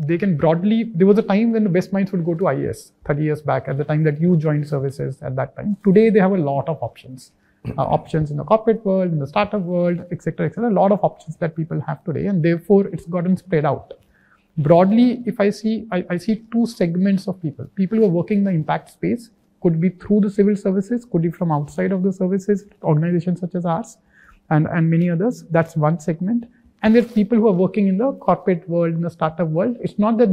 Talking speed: 245 wpm